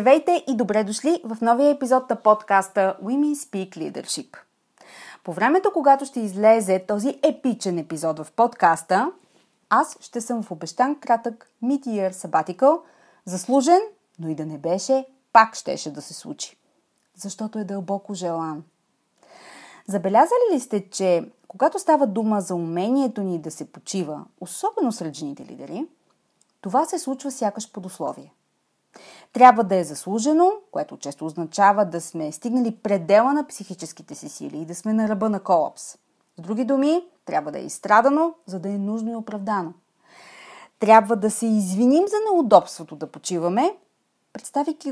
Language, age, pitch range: Bulgarian, 30-49, 190-285 Hz